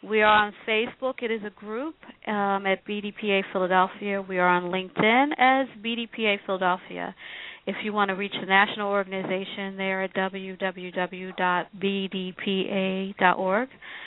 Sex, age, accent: female, 40-59, American